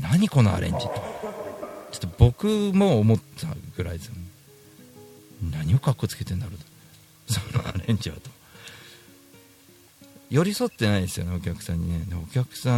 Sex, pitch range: male, 90-130 Hz